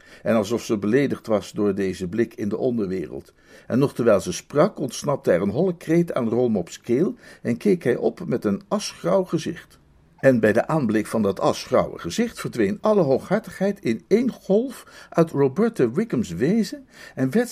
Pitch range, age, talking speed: 145-220 Hz, 60-79, 180 wpm